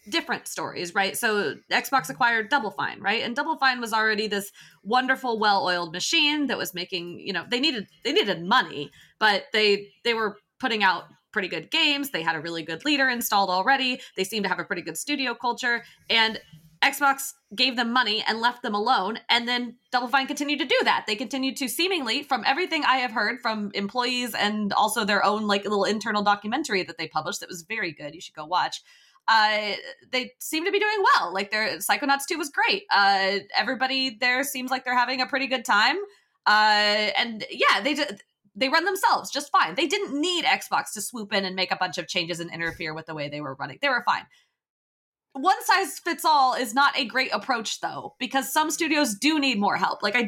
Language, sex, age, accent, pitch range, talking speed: English, female, 20-39, American, 200-275 Hz, 210 wpm